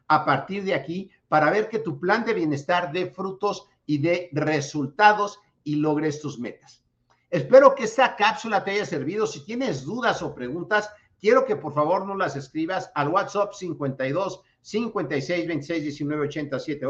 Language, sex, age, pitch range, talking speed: Spanish, male, 50-69, 150-200 Hz, 165 wpm